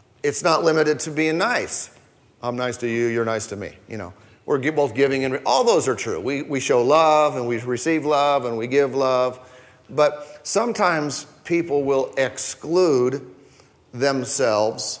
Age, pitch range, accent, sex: 40-59, 120-145 Hz, American, male